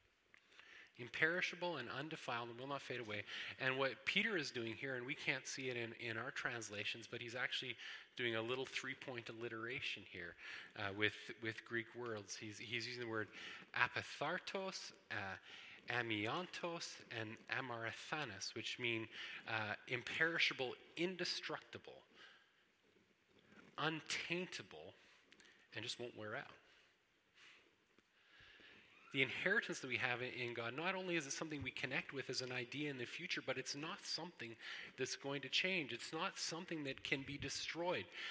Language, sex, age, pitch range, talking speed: English, male, 30-49, 115-160 Hz, 145 wpm